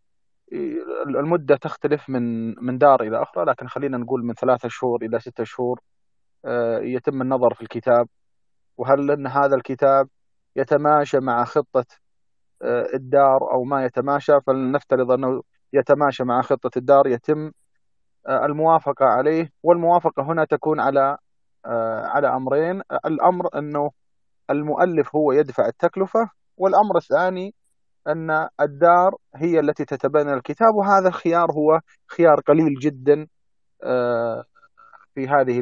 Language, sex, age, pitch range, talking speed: Arabic, male, 30-49, 125-165 Hz, 115 wpm